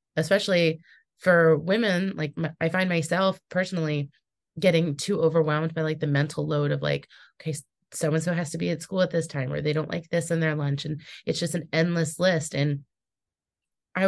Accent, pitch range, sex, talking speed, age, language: American, 155-185 Hz, female, 190 wpm, 20-39, English